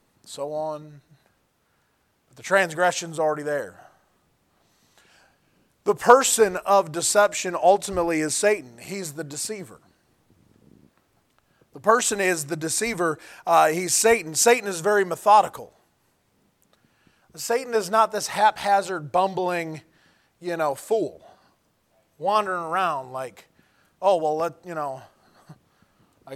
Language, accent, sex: English, American, male